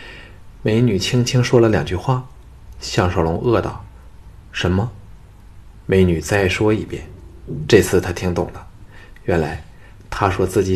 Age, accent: 20-39, native